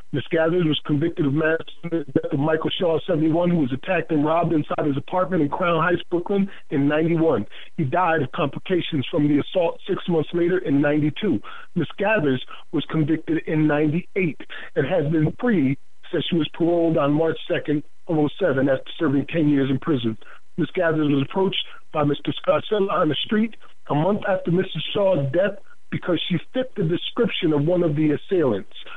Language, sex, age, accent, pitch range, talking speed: English, male, 50-69, American, 150-190 Hz, 185 wpm